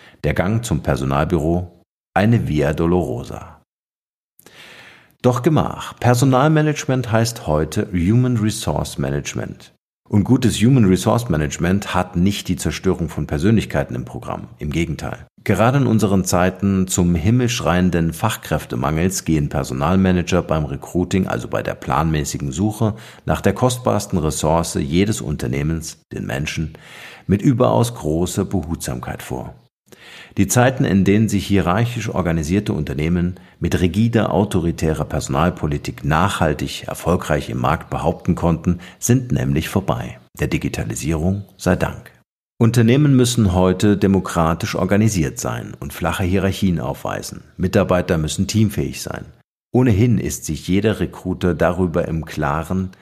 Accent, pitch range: German, 80-110 Hz